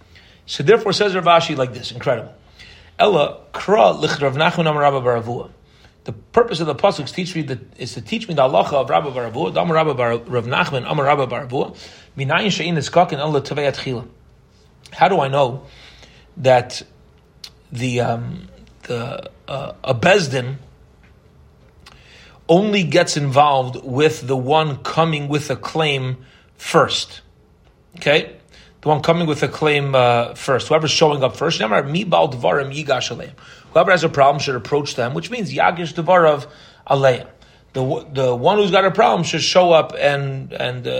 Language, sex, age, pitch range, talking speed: English, male, 40-59, 125-165 Hz, 145 wpm